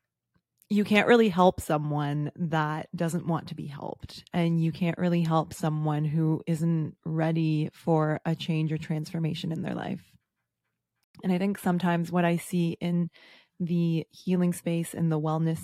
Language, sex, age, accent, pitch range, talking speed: English, female, 20-39, American, 160-180 Hz, 160 wpm